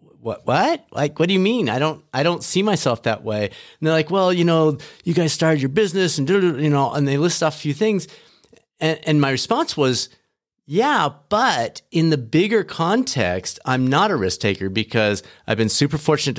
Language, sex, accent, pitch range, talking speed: English, male, American, 110-150 Hz, 210 wpm